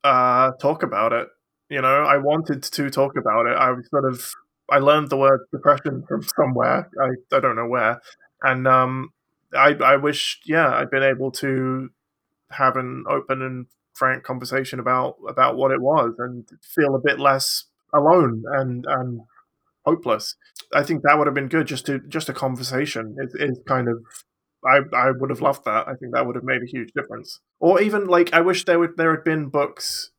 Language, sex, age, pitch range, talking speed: English, male, 20-39, 130-150 Hz, 200 wpm